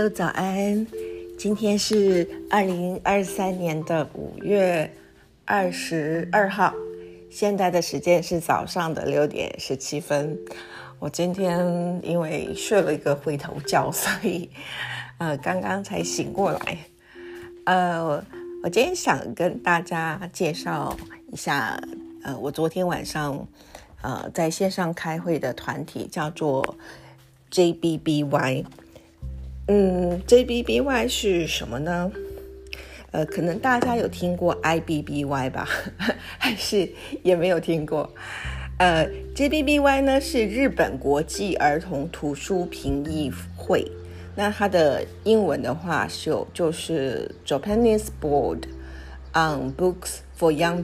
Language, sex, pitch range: Chinese, female, 135-190 Hz